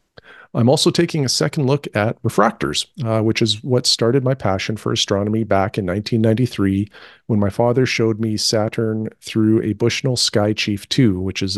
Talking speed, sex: 175 wpm, male